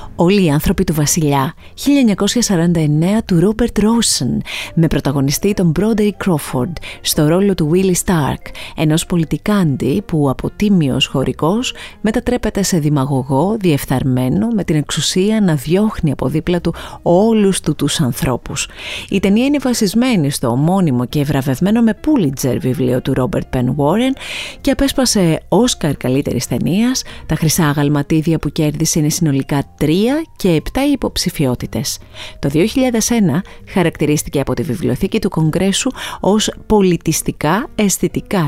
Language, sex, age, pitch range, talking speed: Greek, female, 30-49, 145-210 Hz, 125 wpm